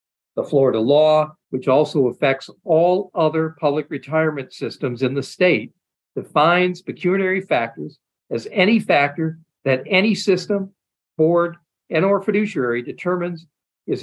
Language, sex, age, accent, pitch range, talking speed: English, male, 50-69, American, 130-185 Hz, 125 wpm